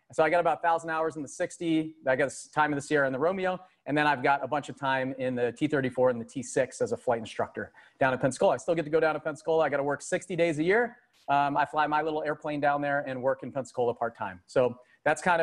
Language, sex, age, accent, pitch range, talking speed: English, male, 30-49, American, 140-180 Hz, 275 wpm